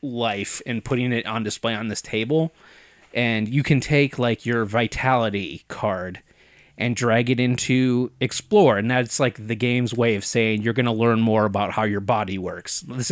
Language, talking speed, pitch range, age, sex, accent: English, 190 wpm, 100-125 Hz, 30-49, male, American